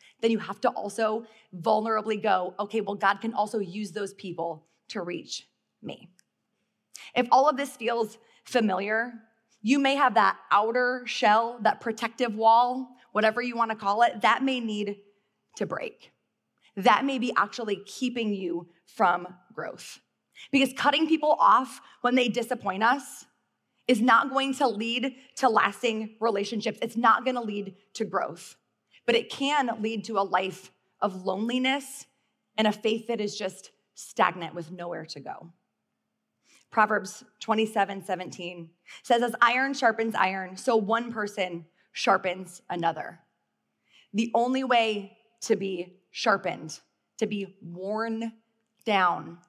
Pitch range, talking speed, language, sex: 190-235 Hz, 140 wpm, English, female